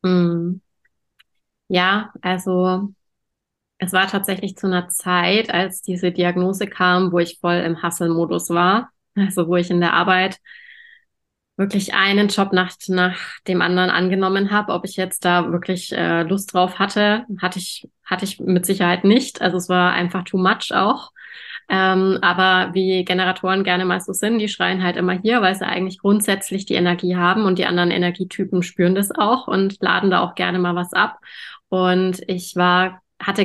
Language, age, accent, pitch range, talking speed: German, 20-39, German, 180-195 Hz, 170 wpm